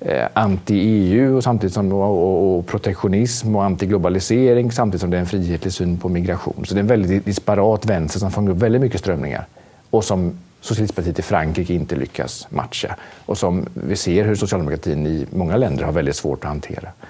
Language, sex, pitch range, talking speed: Swedish, male, 90-110 Hz, 190 wpm